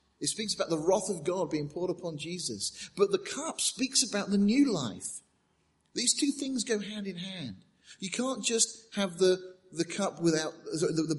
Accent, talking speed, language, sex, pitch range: British, 190 wpm, English, male, 155-230 Hz